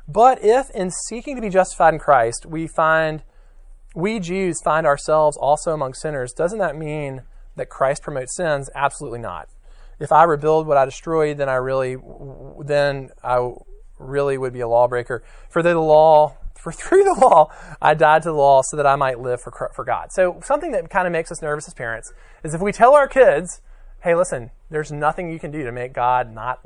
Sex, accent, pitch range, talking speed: male, American, 145-235 Hz, 205 wpm